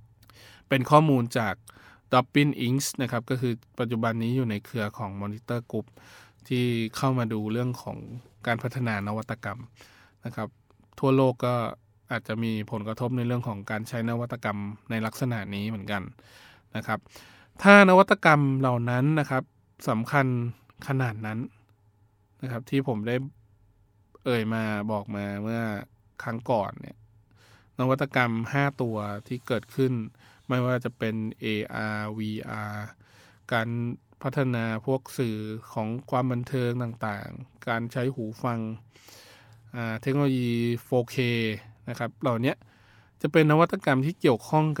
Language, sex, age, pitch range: Thai, male, 20-39, 110-130 Hz